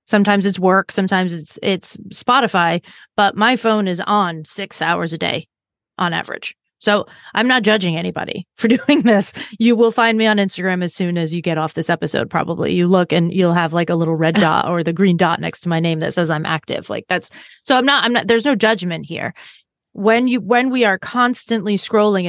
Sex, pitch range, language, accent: female, 180-225 Hz, English, American